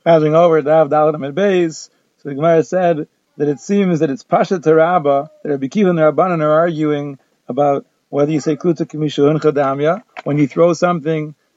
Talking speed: 170 wpm